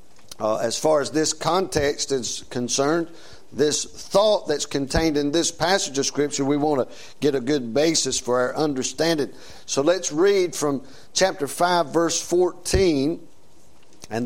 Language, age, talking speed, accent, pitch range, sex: English, 50-69, 150 wpm, American, 145-175 Hz, male